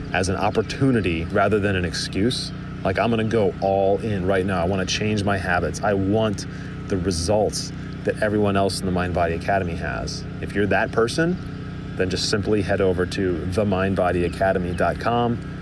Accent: American